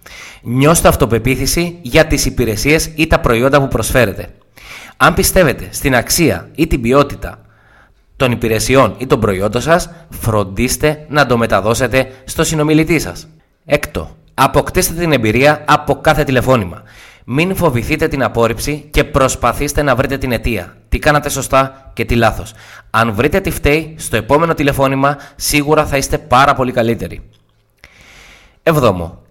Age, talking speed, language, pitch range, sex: 20-39, 135 wpm, Greek, 110-150 Hz, male